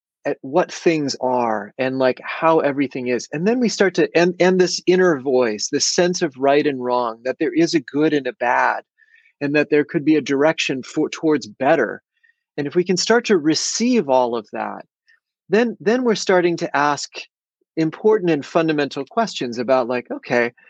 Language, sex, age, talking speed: English, male, 30-49, 190 wpm